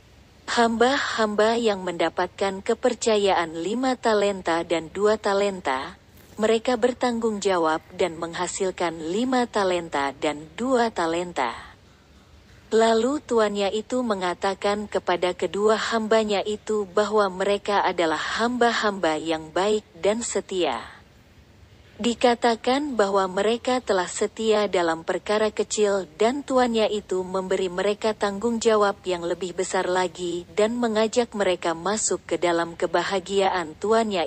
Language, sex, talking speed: Indonesian, female, 110 wpm